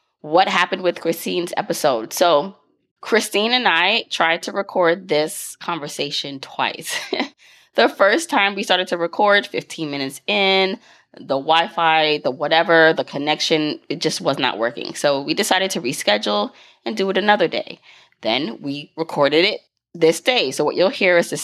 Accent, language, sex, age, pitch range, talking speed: American, English, female, 20-39, 150-185 Hz, 160 wpm